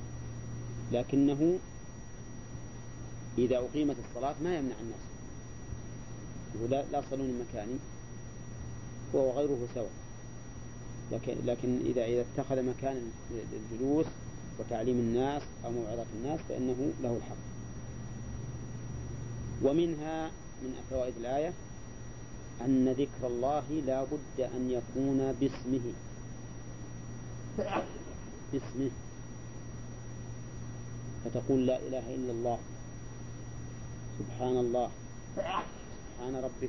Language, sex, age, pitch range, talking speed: English, male, 40-59, 120-135 Hz, 80 wpm